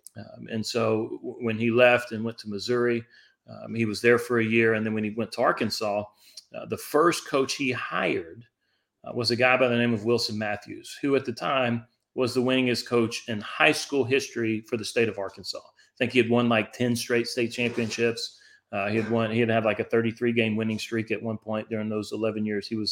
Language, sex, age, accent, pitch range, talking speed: English, male, 40-59, American, 110-125 Hz, 235 wpm